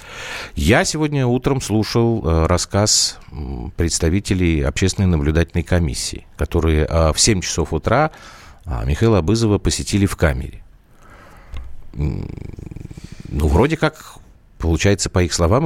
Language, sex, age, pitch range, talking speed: Russian, male, 50-69, 75-105 Hz, 100 wpm